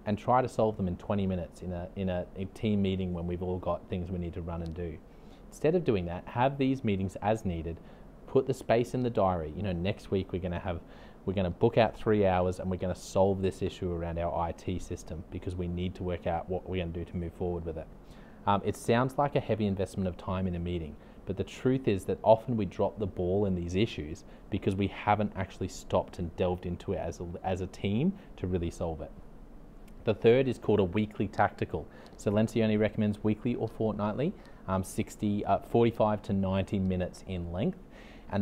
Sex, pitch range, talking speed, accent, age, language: male, 90-105 Hz, 230 wpm, Australian, 30-49, English